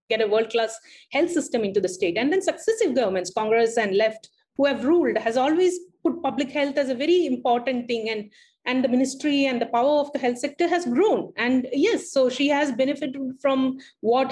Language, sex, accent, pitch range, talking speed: English, female, Indian, 220-295 Hz, 205 wpm